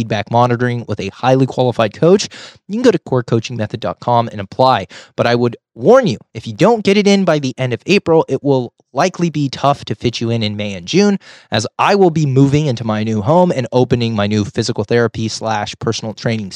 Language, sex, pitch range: English, male, 115-155 Hz